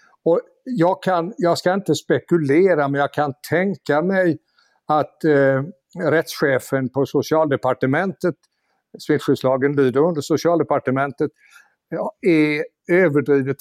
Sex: male